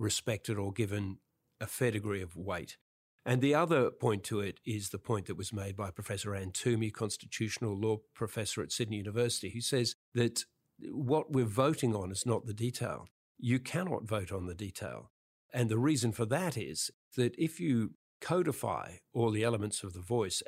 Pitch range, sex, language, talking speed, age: 105-125 Hz, male, English, 185 wpm, 50-69